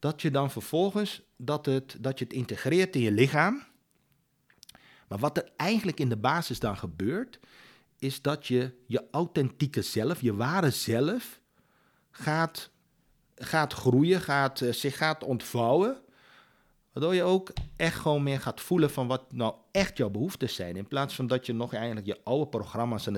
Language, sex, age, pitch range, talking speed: Dutch, male, 50-69, 110-145 Hz, 170 wpm